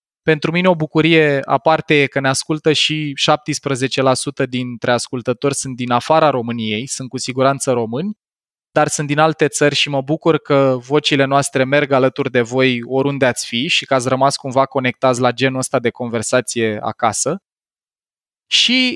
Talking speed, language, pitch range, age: 160 wpm, Romanian, 130-165 Hz, 20-39